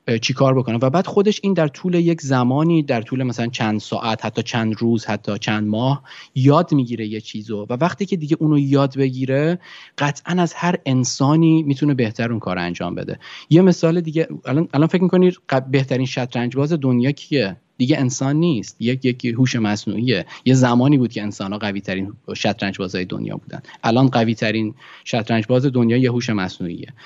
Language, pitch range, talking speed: Persian, 110-135 Hz, 180 wpm